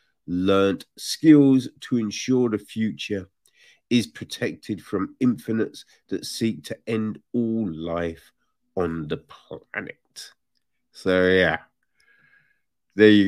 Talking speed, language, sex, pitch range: 105 wpm, English, male, 90-130 Hz